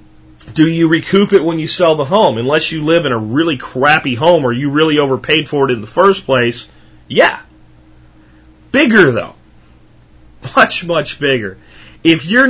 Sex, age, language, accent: male, 30-49, English, American